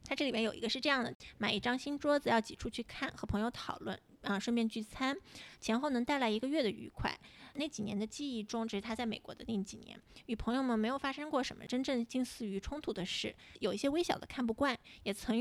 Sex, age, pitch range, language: female, 20-39, 215-265 Hz, Chinese